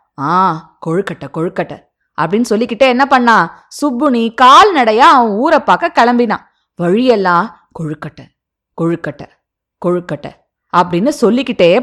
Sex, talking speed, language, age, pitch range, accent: female, 70 wpm, Tamil, 20-39, 195-285 Hz, native